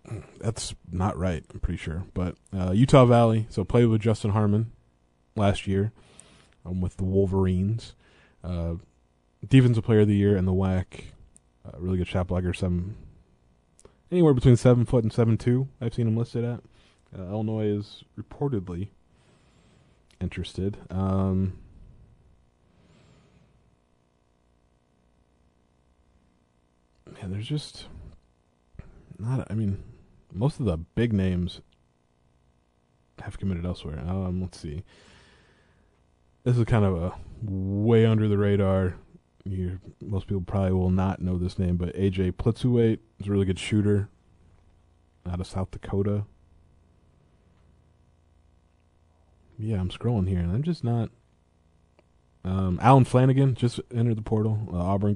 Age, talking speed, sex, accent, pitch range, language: 20-39, 130 wpm, male, American, 80-105 Hz, English